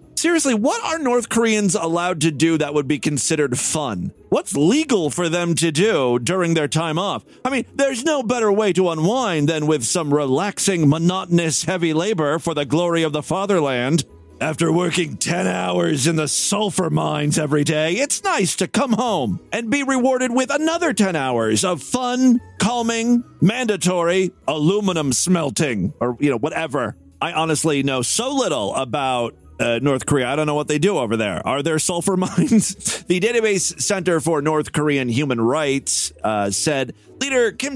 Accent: American